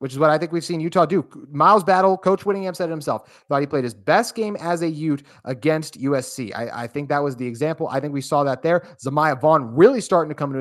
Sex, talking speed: male, 265 wpm